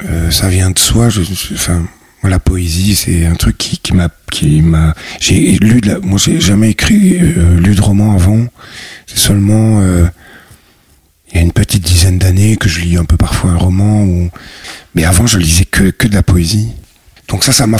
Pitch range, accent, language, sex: 85-105 Hz, French, French, male